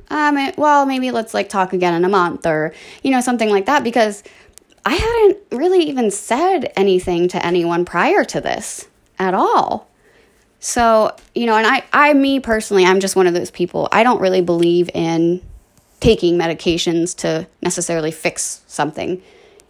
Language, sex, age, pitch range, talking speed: English, female, 20-39, 170-255 Hz, 170 wpm